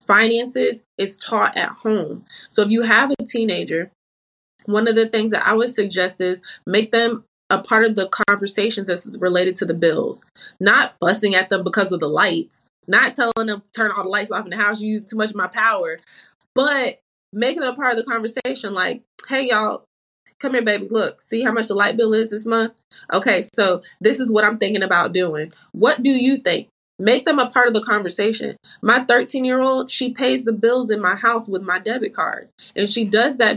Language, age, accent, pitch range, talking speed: English, 20-39, American, 190-230 Hz, 215 wpm